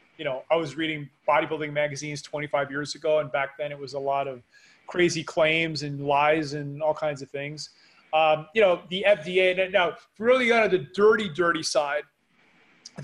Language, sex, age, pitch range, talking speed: English, male, 30-49, 150-185 Hz, 190 wpm